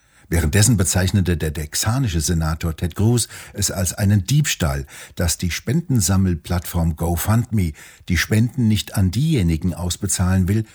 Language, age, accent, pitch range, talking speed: German, 60-79, German, 85-110 Hz, 125 wpm